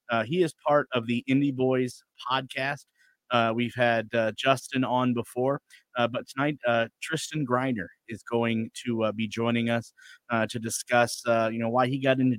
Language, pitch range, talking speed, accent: English, 115-130 Hz, 190 wpm, American